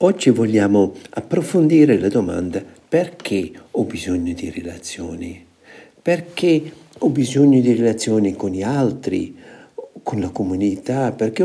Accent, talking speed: native, 115 wpm